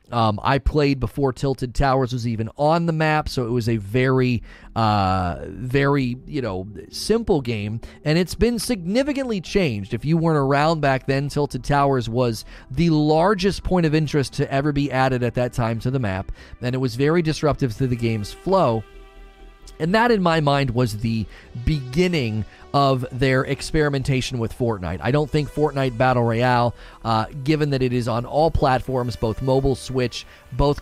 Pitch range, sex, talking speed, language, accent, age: 115-145 Hz, male, 175 wpm, English, American, 30-49